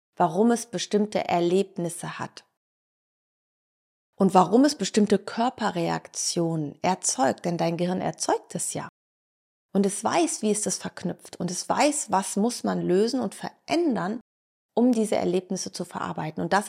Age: 30-49